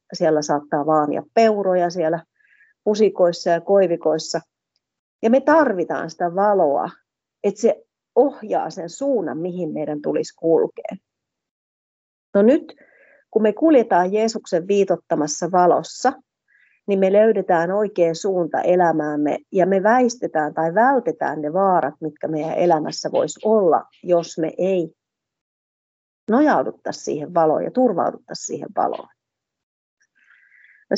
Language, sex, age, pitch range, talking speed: Finnish, female, 30-49, 165-220 Hz, 115 wpm